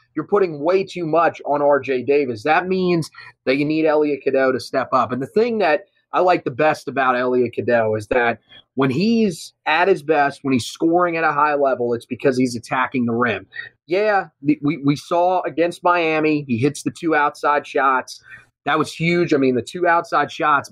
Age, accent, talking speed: 30-49, American, 205 wpm